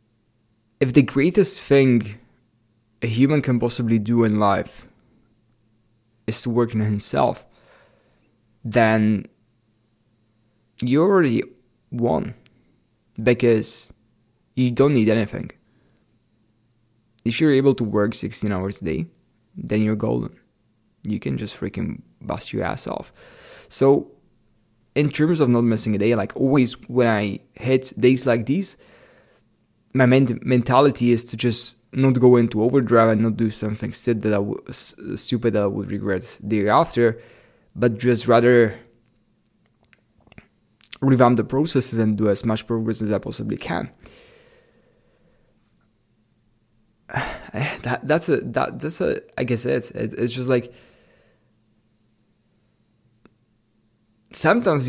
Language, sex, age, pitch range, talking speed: English, male, 20-39, 110-125 Hz, 120 wpm